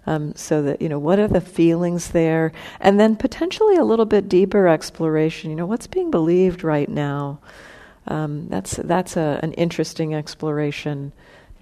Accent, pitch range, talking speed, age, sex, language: American, 150-185 Hz, 170 wpm, 50-69, female, English